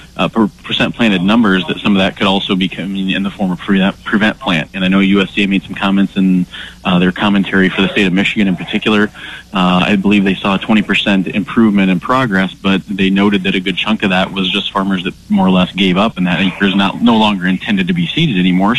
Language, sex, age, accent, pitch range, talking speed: English, male, 30-49, American, 95-105 Hz, 245 wpm